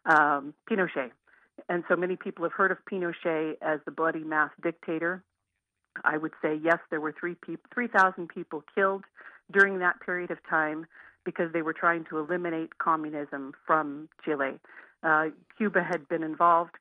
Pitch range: 160-180 Hz